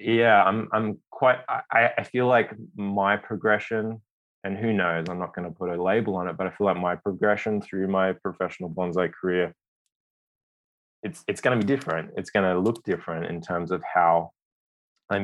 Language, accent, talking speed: English, Australian, 195 wpm